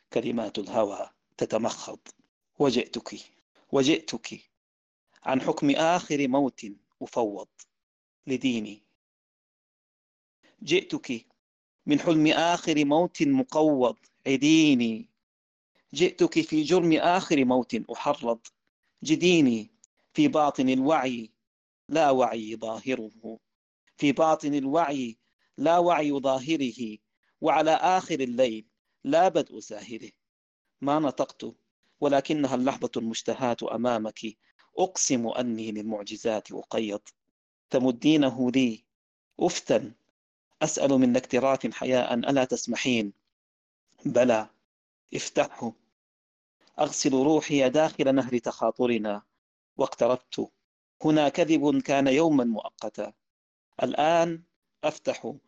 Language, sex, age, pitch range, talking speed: Arabic, male, 40-59, 115-155 Hz, 85 wpm